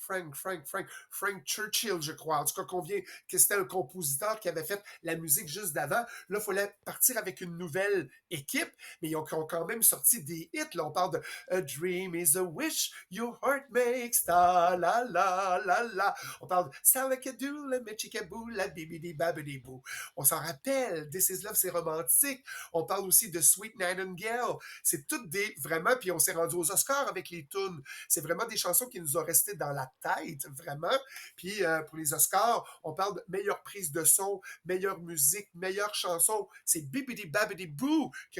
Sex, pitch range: male, 165-205 Hz